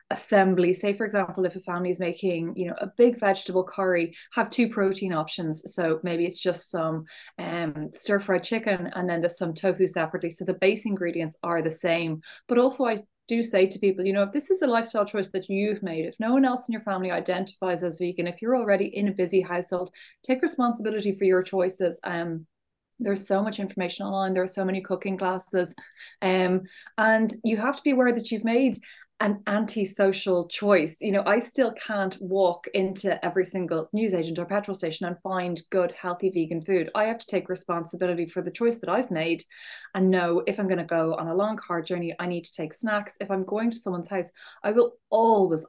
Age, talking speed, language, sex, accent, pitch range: 20-39, 215 wpm, English, female, Irish, 175-205 Hz